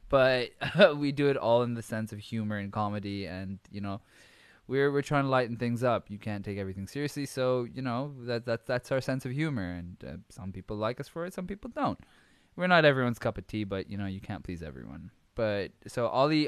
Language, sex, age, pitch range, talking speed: English, male, 20-39, 100-120 Hz, 235 wpm